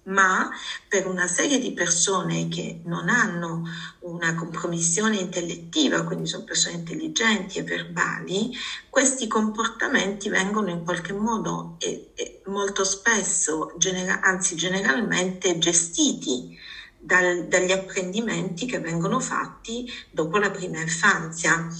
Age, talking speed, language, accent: 40-59, 105 wpm, Italian, native